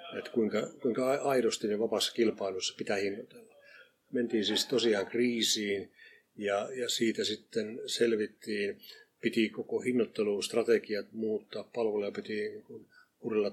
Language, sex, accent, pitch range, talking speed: Finnish, male, native, 100-130 Hz, 115 wpm